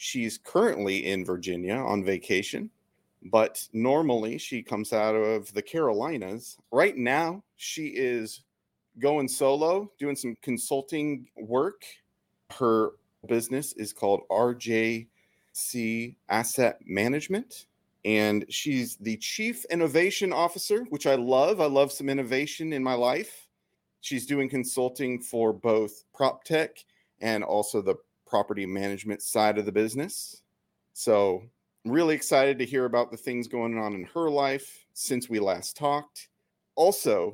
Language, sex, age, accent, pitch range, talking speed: English, male, 30-49, American, 115-155 Hz, 130 wpm